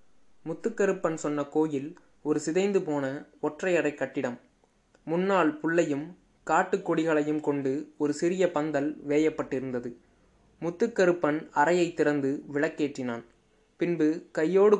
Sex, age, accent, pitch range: male, 20-39, native, 145-175 Hz